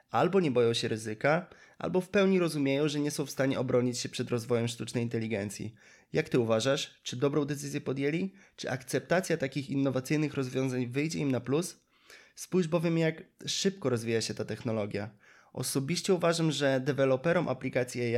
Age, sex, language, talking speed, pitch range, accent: 20-39, male, Polish, 160 wpm, 120-150 Hz, native